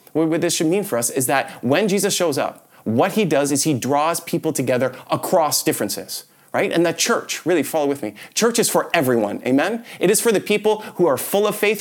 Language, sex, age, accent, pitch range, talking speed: English, male, 30-49, American, 125-175 Hz, 230 wpm